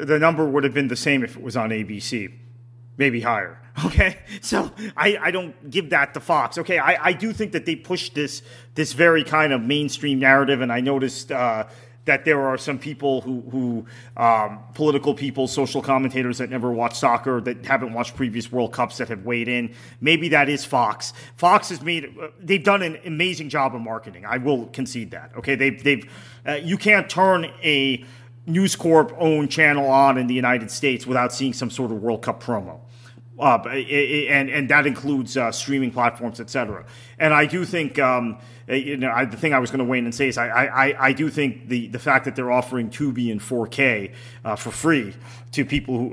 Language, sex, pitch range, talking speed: English, male, 120-145 Hz, 210 wpm